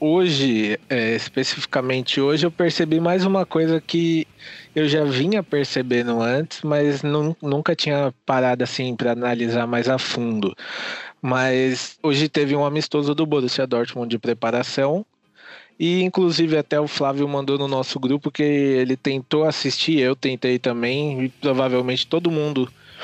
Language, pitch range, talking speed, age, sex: Portuguese, 125-155 Hz, 140 wpm, 20-39, male